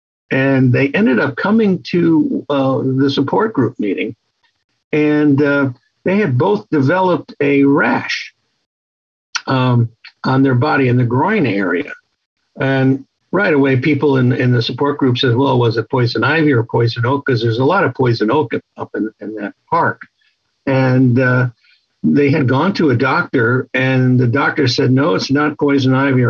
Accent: American